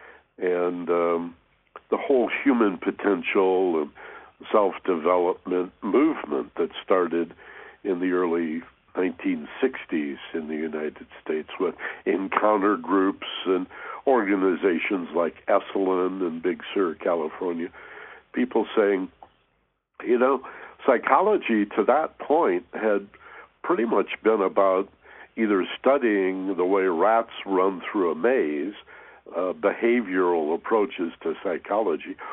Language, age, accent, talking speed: English, 60-79, American, 105 wpm